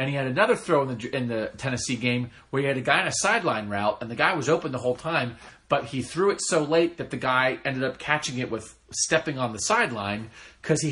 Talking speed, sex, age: 265 wpm, male, 30-49